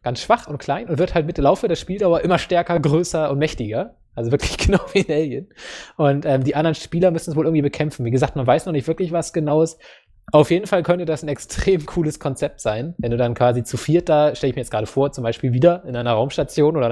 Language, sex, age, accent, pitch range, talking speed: English, male, 20-39, German, 130-160 Hz, 260 wpm